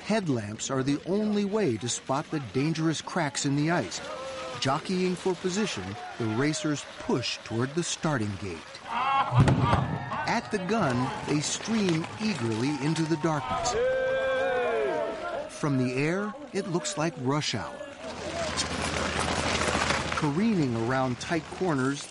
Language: English